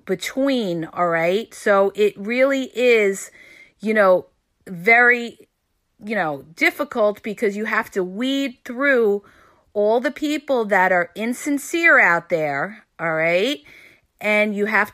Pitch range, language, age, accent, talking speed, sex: 180-240 Hz, English, 40-59, American, 130 wpm, female